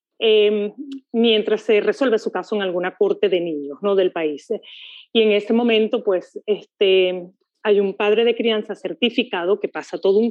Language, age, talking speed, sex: Spanish, 40-59, 175 wpm, female